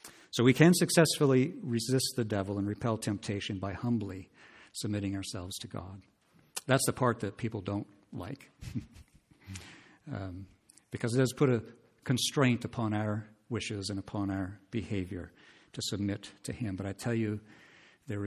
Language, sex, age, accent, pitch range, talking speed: English, male, 50-69, American, 100-120 Hz, 150 wpm